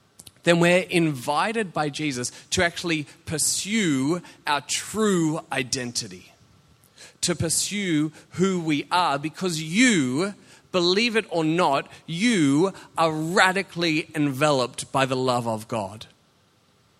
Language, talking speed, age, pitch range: English, 110 wpm, 40-59, 140-190 Hz